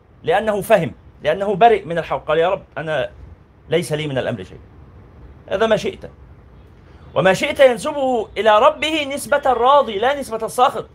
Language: Arabic